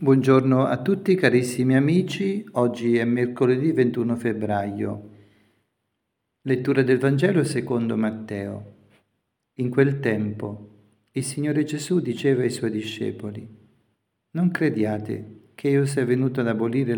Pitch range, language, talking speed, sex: 115-135 Hz, Italian, 115 wpm, male